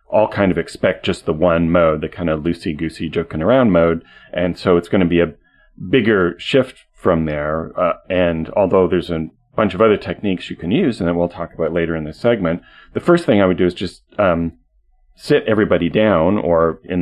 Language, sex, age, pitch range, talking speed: English, male, 40-59, 80-100 Hz, 215 wpm